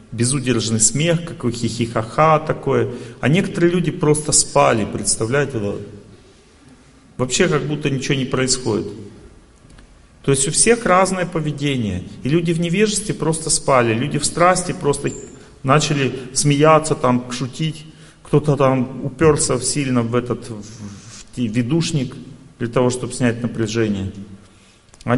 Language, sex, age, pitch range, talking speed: Russian, male, 40-59, 105-145 Hz, 120 wpm